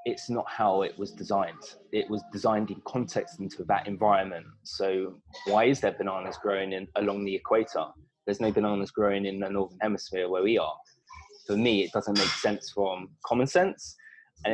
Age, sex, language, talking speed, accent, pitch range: 20-39, male, English, 180 wpm, British, 100-130 Hz